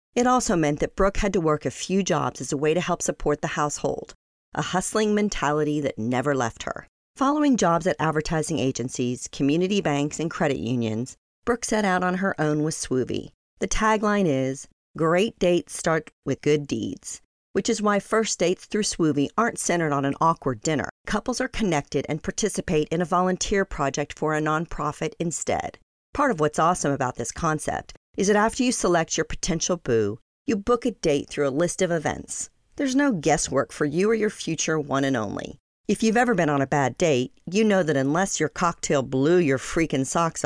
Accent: American